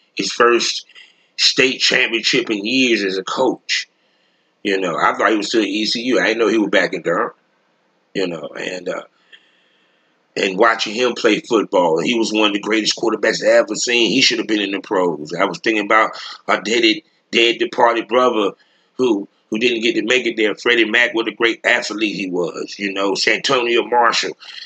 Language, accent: English, American